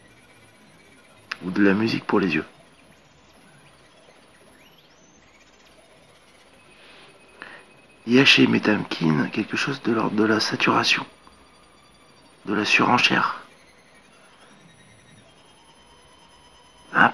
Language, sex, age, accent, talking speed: French, male, 60-79, French, 80 wpm